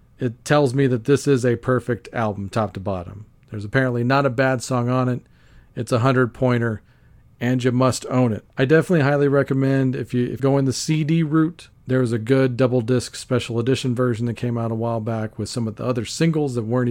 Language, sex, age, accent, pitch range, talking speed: English, male, 40-59, American, 115-145 Hz, 225 wpm